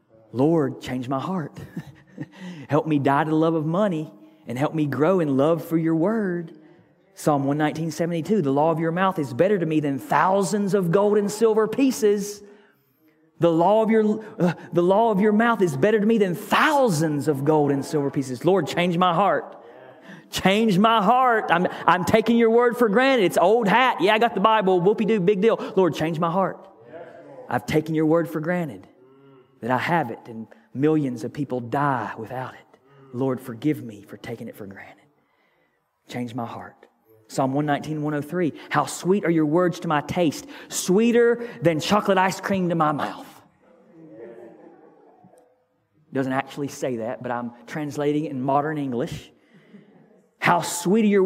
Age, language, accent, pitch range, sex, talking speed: 30-49, English, American, 145-205 Hz, male, 175 wpm